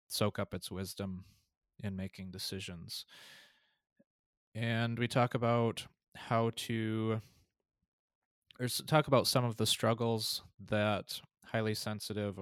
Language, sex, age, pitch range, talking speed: English, male, 20-39, 95-115 Hz, 105 wpm